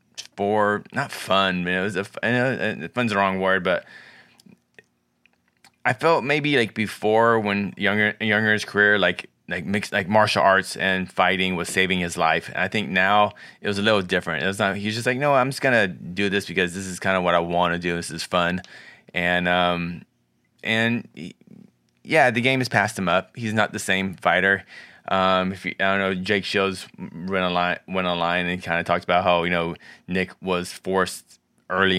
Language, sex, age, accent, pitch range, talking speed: English, male, 20-39, American, 90-105 Hz, 205 wpm